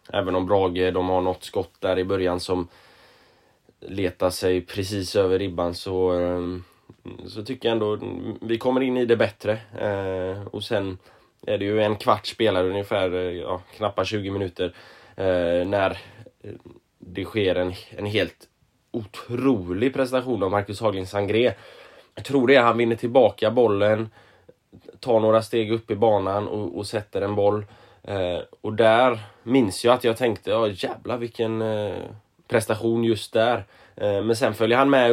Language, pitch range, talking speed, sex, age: Swedish, 95-115 Hz, 150 wpm, male, 10-29